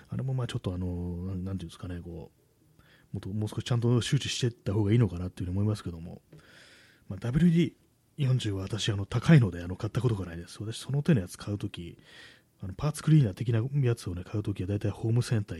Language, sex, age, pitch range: Japanese, male, 30-49, 90-120 Hz